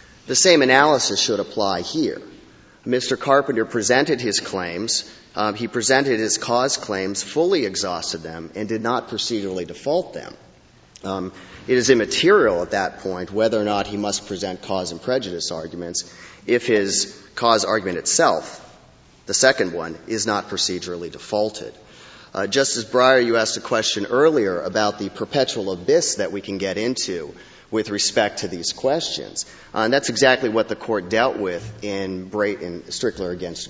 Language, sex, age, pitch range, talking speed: English, male, 40-59, 95-120 Hz, 160 wpm